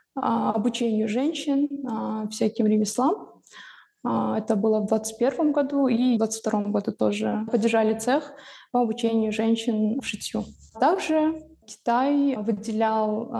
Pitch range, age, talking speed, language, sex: 215-250 Hz, 20-39, 105 wpm, Russian, female